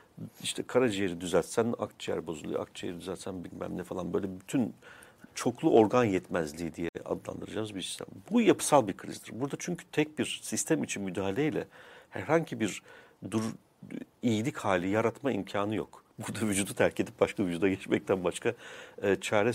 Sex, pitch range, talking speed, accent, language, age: male, 95-125 Hz, 145 wpm, native, Turkish, 50-69